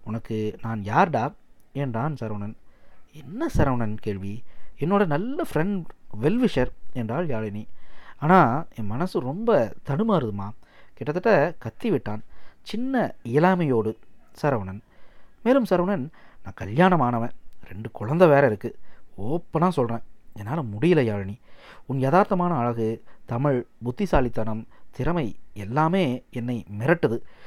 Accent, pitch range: native, 115-175 Hz